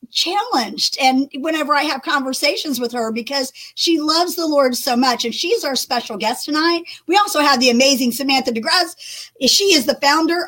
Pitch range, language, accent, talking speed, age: 240-295 Hz, English, American, 185 wpm, 50-69